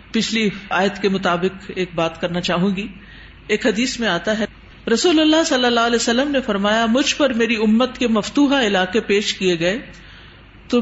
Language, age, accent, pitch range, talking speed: English, 50-69, Indian, 195-245 Hz, 185 wpm